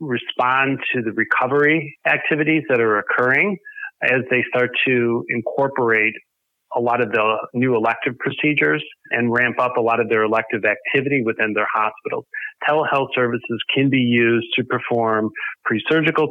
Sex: male